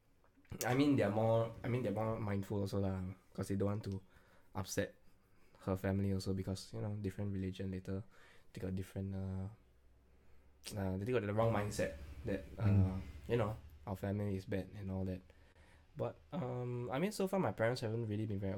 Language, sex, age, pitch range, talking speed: English, male, 10-29, 95-105 Hz, 195 wpm